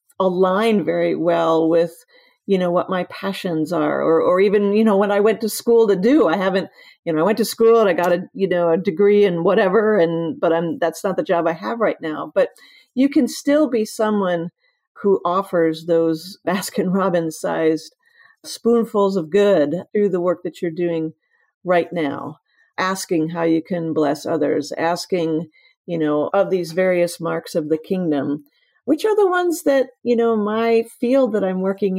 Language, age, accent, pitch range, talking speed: English, 50-69, American, 160-205 Hz, 190 wpm